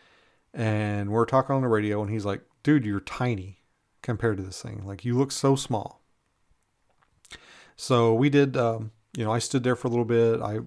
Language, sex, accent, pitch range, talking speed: English, male, American, 110-130 Hz, 195 wpm